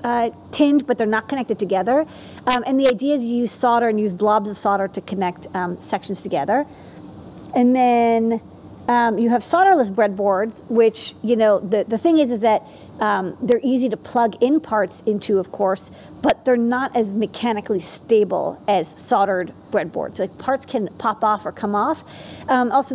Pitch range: 205-245 Hz